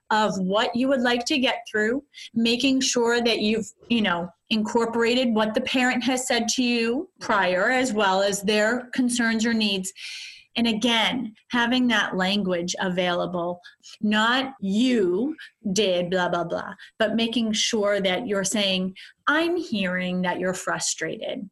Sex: female